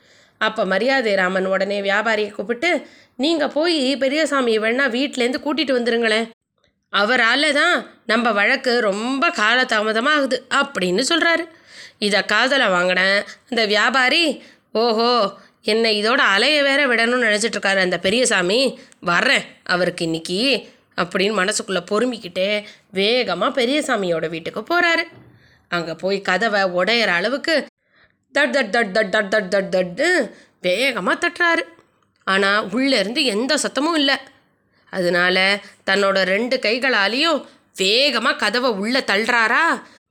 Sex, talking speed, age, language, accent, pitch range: female, 105 wpm, 20-39, Tamil, native, 200-275 Hz